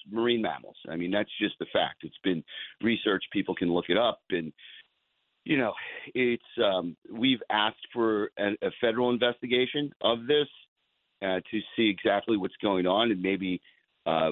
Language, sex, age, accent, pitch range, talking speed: English, male, 40-59, American, 95-120 Hz, 170 wpm